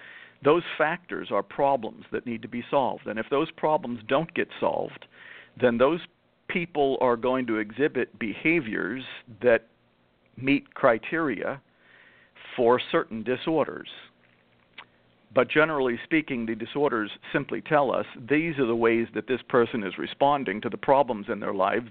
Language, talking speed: English, 145 wpm